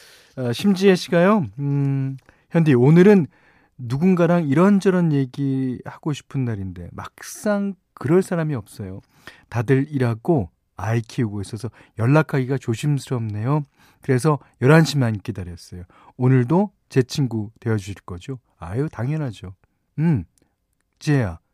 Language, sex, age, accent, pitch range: Korean, male, 40-59, native, 115-180 Hz